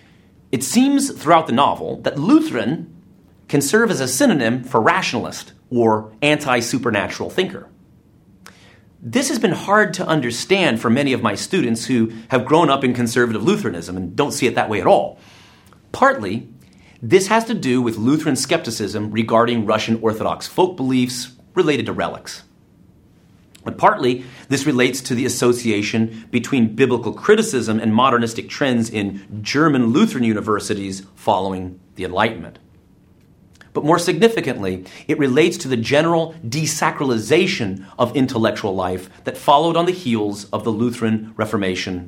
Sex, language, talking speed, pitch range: male, English, 140 wpm, 105-140 Hz